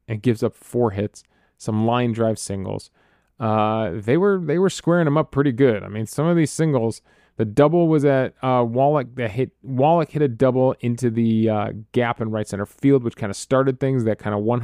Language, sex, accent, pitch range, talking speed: English, male, American, 110-150 Hz, 220 wpm